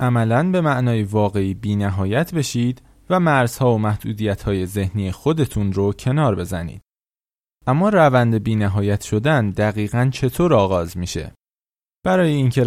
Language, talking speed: Persian, 120 wpm